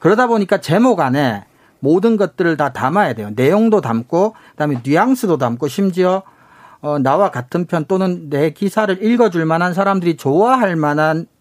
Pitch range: 145-210 Hz